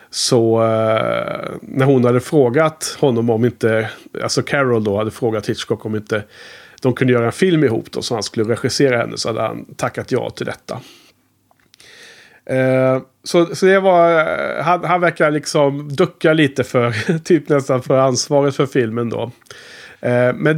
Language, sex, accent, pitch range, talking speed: Swedish, male, Norwegian, 120-170 Hz, 155 wpm